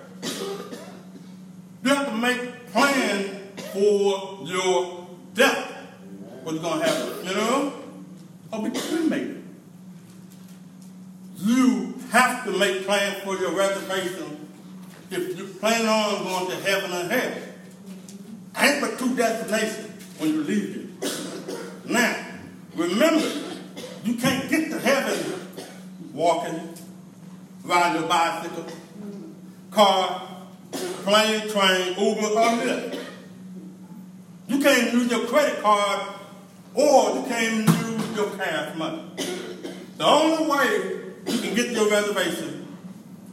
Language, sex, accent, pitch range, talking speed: English, male, American, 185-230 Hz, 110 wpm